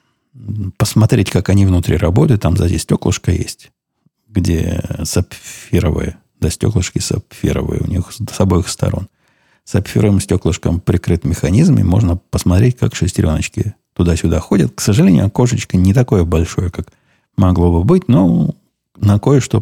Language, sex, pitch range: Russian, male, 85-115 Hz